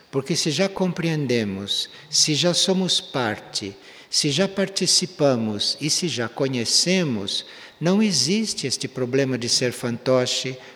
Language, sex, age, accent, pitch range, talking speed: Portuguese, male, 60-79, Brazilian, 125-175 Hz, 125 wpm